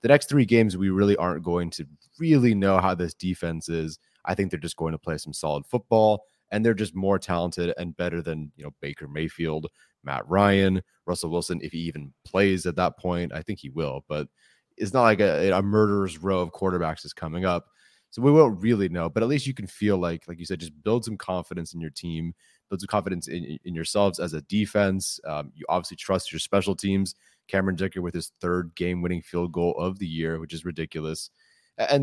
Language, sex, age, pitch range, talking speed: English, male, 20-39, 85-105 Hz, 220 wpm